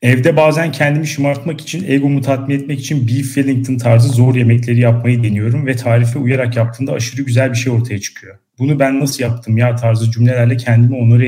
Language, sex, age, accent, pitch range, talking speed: Turkish, male, 40-59, native, 115-140 Hz, 185 wpm